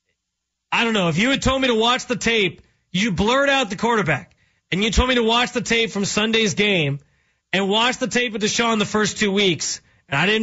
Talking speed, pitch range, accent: 235 wpm, 165-215 Hz, American